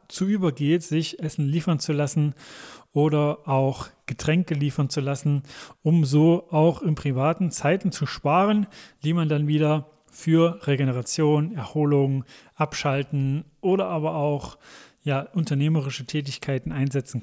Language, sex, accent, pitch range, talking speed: German, male, German, 140-165 Hz, 120 wpm